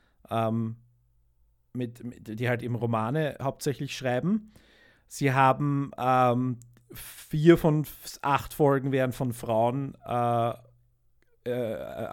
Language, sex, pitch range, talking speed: German, male, 120-135 Hz, 90 wpm